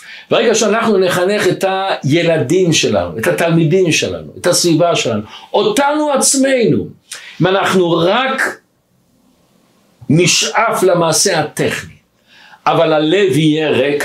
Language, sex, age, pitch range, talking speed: Hebrew, male, 60-79, 180-245 Hz, 105 wpm